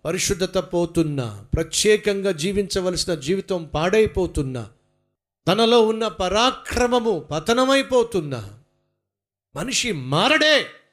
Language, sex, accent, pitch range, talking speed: Telugu, male, native, 130-185 Hz, 65 wpm